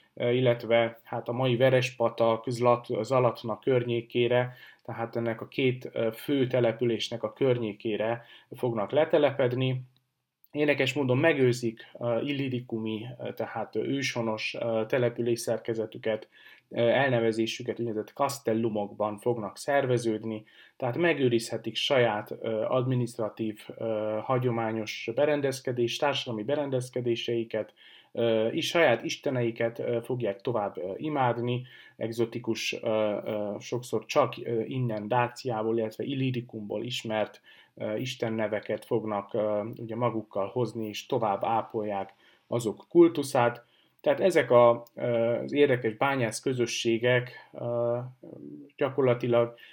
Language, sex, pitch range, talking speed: Hungarian, male, 110-125 Hz, 80 wpm